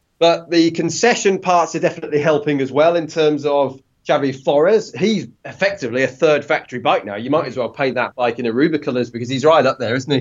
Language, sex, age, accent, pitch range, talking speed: English, male, 30-49, British, 120-175 Hz, 215 wpm